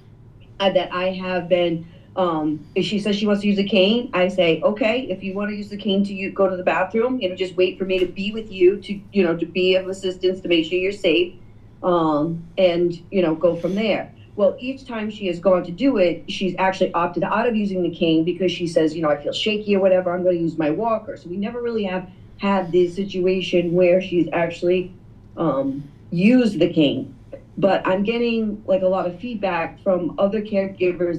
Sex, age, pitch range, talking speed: female, 40-59, 170-200 Hz, 225 wpm